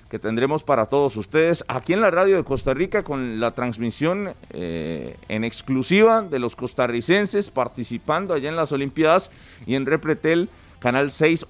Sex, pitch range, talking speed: male, 110-155 Hz, 160 wpm